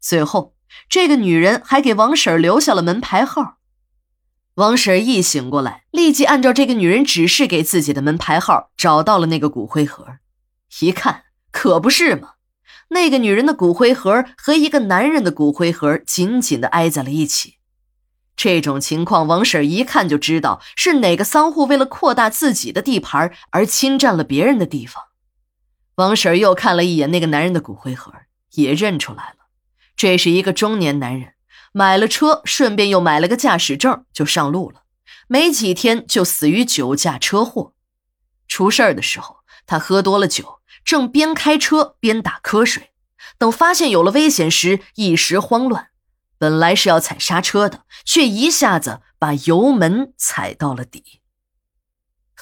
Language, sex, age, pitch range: Chinese, female, 20-39, 150-255 Hz